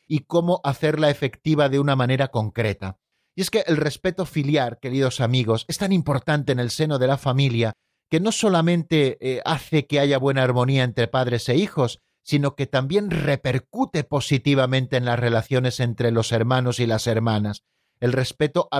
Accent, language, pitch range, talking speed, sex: Spanish, Spanish, 130-165 Hz, 175 wpm, male